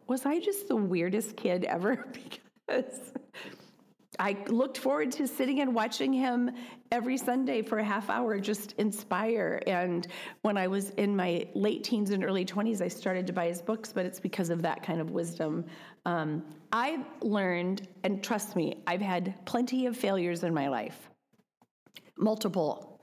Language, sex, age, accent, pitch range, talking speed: English, female, 40-59, American, 185-240 Hz, 165 wpm